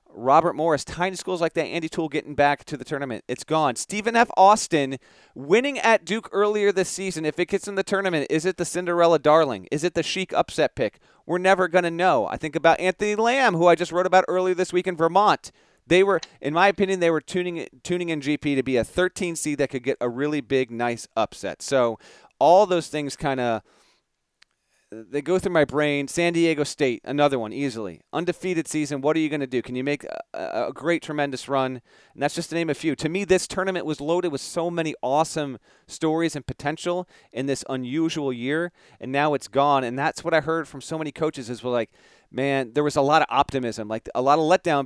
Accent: American